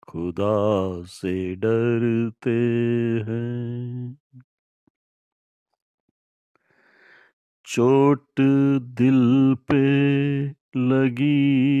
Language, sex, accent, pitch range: Hindi, male, native, 120-140 Hz